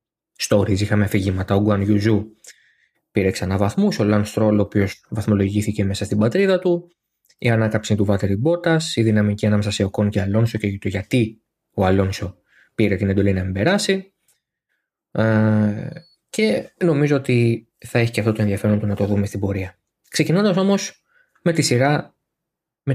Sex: male